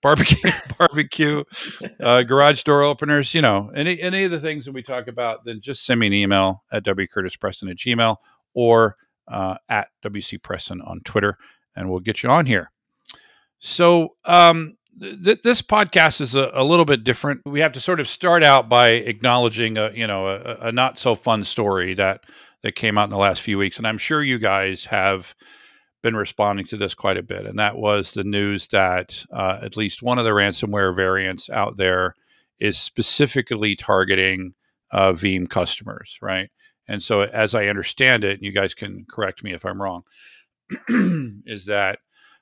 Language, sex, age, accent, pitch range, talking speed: English, male, 50-69, American, 95-135 Hz, 180 wpm